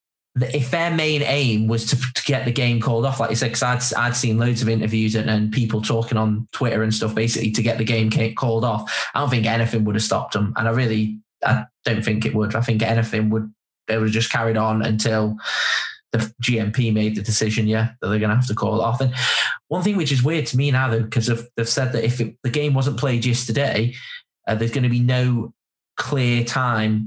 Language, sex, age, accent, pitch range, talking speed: English, male, 10-29, British, 110-125 Hz, 235 wpm